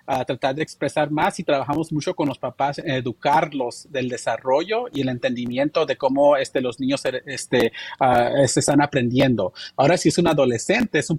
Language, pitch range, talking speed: Spanish, 135-170 Hz, 190 wpm